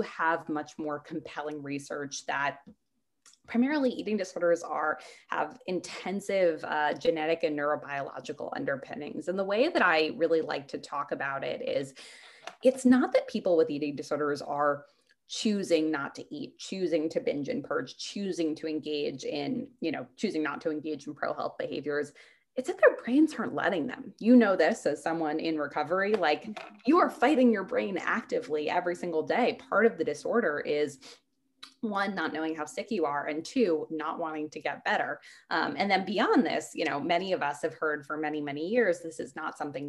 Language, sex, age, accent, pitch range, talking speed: English, female, 20-39, American, 150-220 Hz, 185 wpm